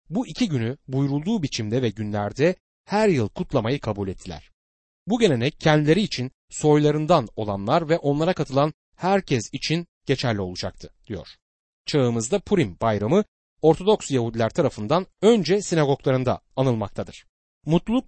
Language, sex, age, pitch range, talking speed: Turkish, male, 40-59, 115-170 Hz, 120 wpm